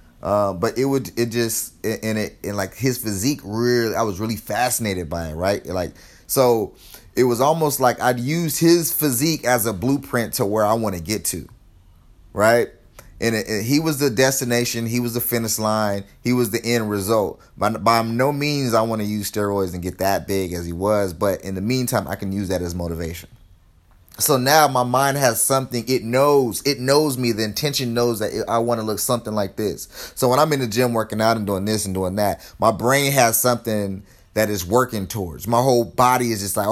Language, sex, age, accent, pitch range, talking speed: English, male, 30-49, American, 100-125 Hz, 220 wpm